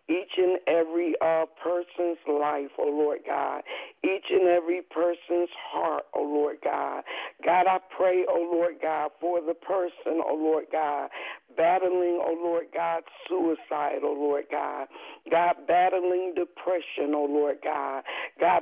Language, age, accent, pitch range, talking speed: English, 50-69, American, 155-180 Hz, 140 wpm